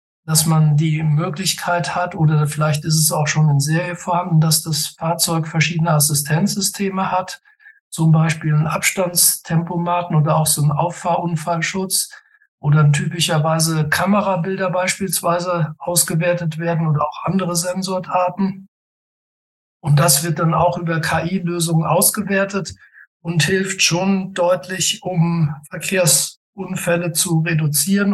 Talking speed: 120 wpm